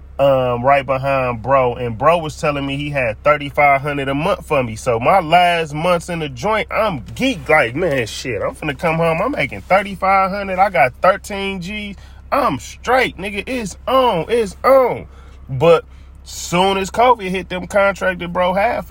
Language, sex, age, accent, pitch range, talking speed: English, male, 30-49, American, 115-165 Hz, 180 wpm